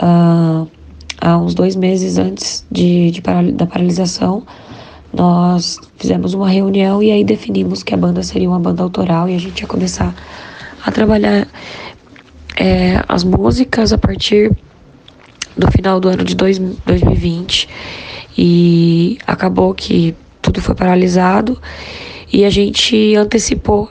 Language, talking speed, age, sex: Portuguese, 120 wpm, 10-29, female